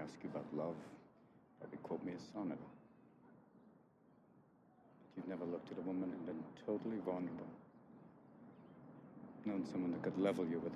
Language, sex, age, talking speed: English, male, 60-79, 150 wpm